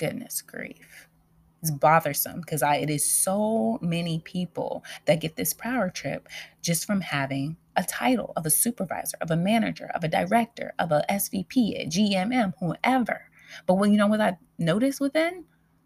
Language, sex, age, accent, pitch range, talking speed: English, female, 20-39, American, 145-210 Hz, 165 wpm